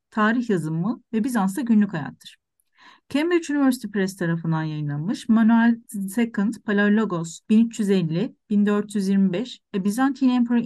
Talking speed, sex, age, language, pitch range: 100 wpm, female, 40-59, Turkish, 180-240 Hz